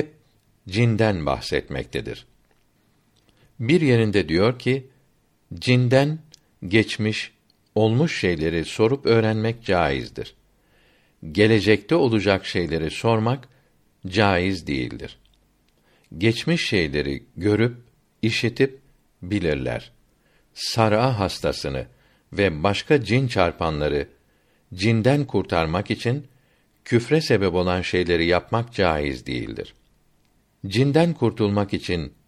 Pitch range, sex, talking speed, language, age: 95-125 Hz, male, 80 wpm, Turkish, 60-79